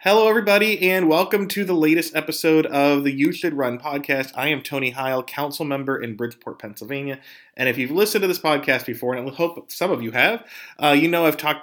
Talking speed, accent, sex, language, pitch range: 220 wpm, American, male, English, 120-160 Hz